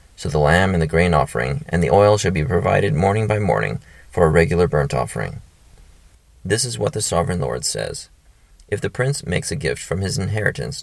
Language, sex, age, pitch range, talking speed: English, male, 30-49, 80-105 Hz, 205 wpm